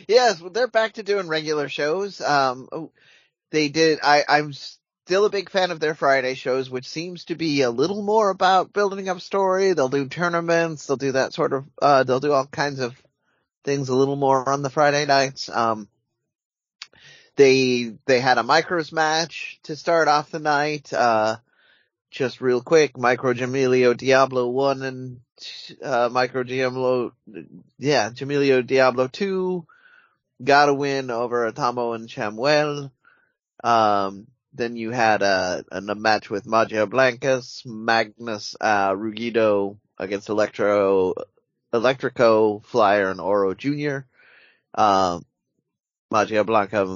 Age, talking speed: 30-49, 140 wpm